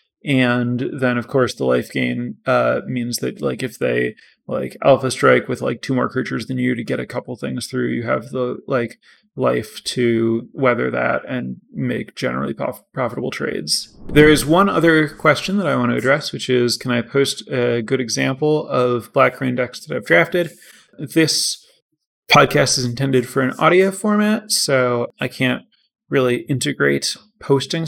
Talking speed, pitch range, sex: 175 wpm, 125-155 Hz, male